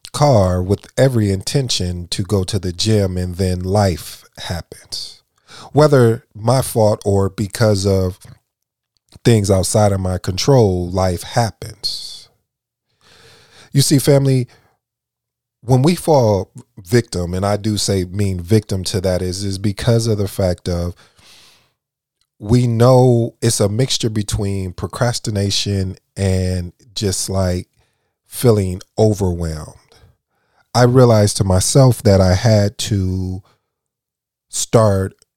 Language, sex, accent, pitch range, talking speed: English, male, American, 95-120 Hz, 115 wpm